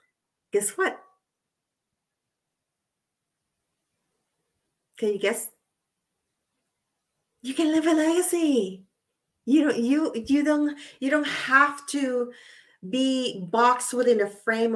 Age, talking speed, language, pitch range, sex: 40-59, 100 wpm, English, 195-265 Hz, female